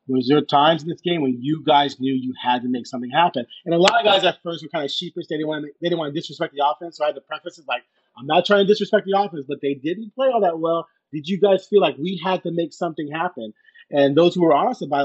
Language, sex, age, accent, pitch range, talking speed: English, male, 30-49, American, 145-180 Hz, 305 wpm